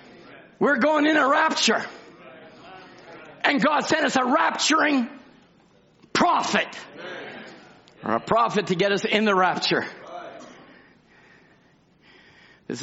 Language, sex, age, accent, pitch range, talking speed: English, male, 50-69, American, 205-310 Hz, 105 wpm